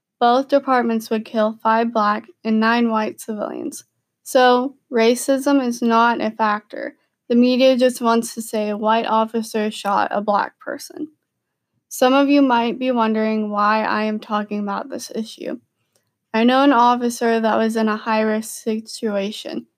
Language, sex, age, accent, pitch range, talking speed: English, female, 20-39, American, 220-250 Hz, 160 wpm